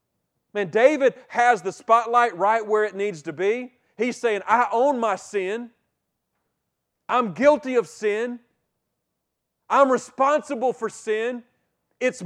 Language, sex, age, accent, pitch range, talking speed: English, male, 40-59, American, 190-255 Hz, 125 wpm